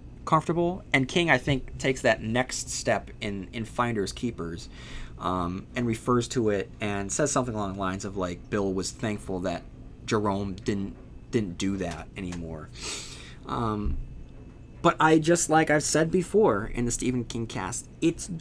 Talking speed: 165 wpm